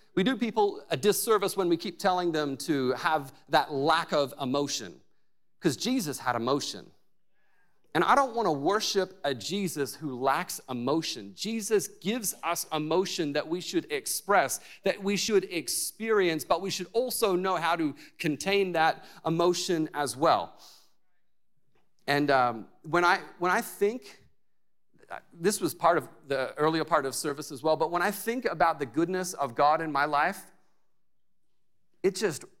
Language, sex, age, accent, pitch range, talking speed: English, male, 40-59, American, 165-240 Hz, 155 wpm